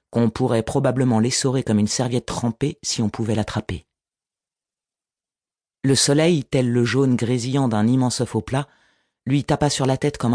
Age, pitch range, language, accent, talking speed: 40-59, 110-135 Hz, French, French, 160 wpm